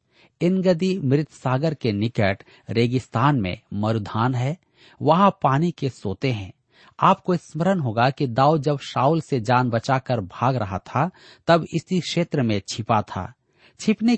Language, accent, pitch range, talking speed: Hindi, native, 120-155 Hz, 140 wpm